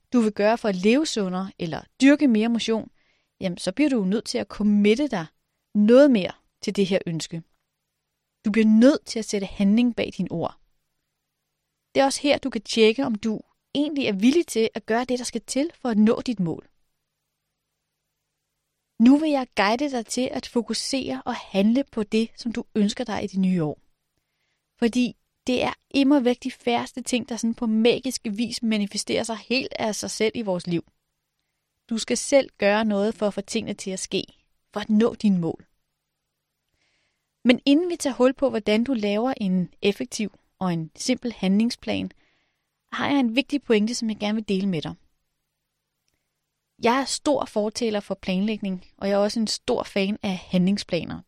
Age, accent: 30-49, native